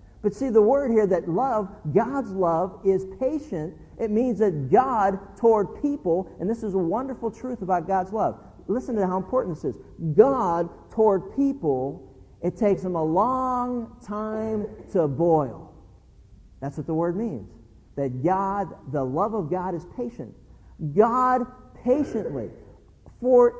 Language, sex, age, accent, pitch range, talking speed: English, male, 50-69, American, 150-220 Hz, 150 wpm